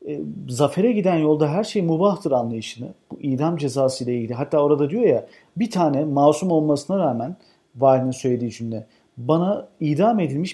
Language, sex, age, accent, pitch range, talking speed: Turkish, male, 50-69, native, 140-210 Hz, 155 wpm